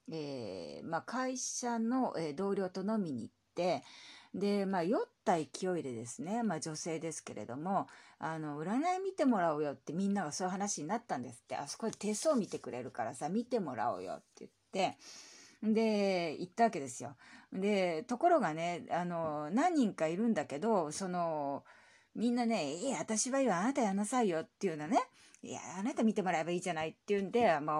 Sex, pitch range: female, 160-230 Hz